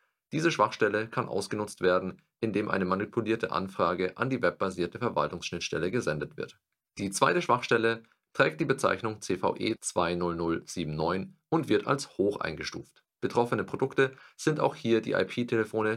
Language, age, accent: German, 40-59, German